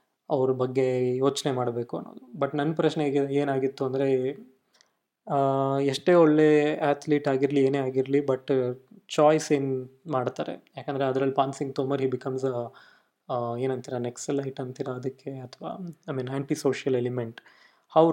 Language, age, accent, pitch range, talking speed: Kannada, 20-39, native, 130-145 Hz, 135 wpm